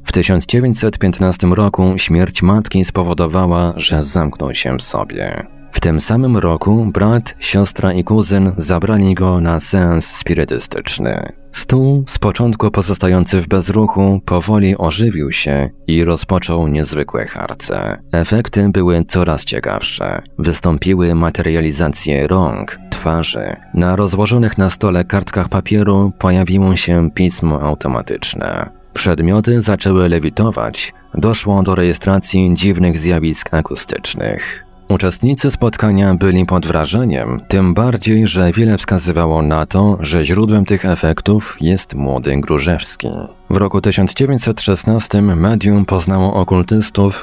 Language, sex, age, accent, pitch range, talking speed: Polish, male, 30-49, native, 85-100 Hz, 115 wpm